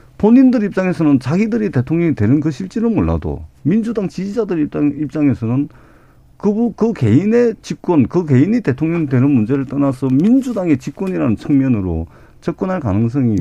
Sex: male